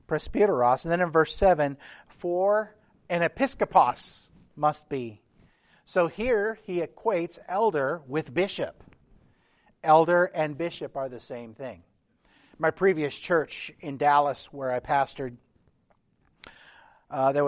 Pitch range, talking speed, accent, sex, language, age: 135-165 Hz, 115 wpm, American, male, English, 50-69